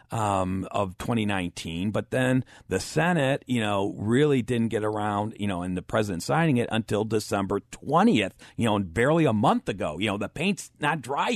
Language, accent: English, American